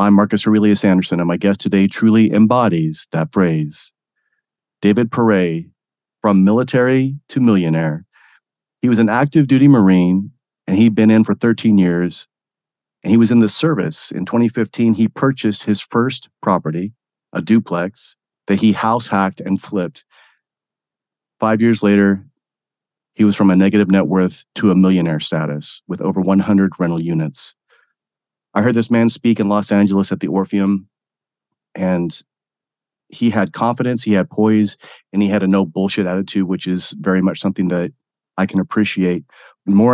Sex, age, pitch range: male, 40-59, 95-110 Hz